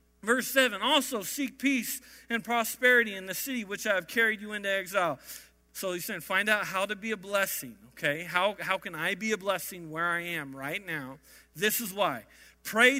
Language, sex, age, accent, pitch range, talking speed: English, male, 40-59, American, 185-255 Hz, 205 wpm